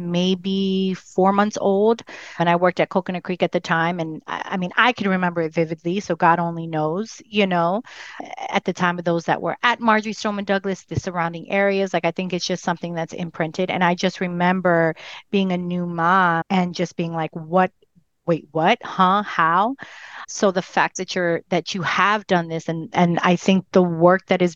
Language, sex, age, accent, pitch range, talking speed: English, female, 30-49, American, 170-195 Hz, 210 wpm